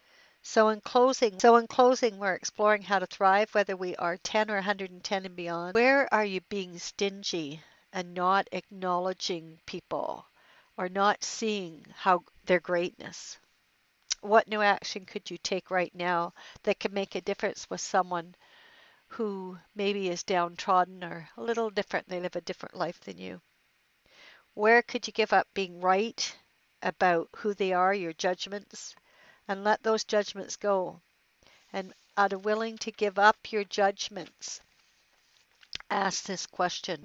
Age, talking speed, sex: 60-79, 150 wpm, female